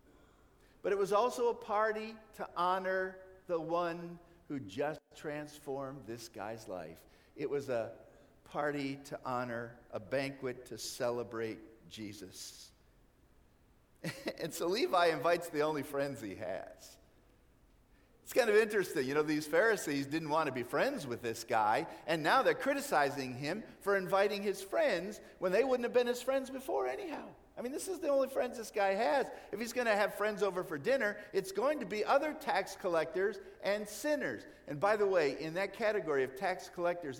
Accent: American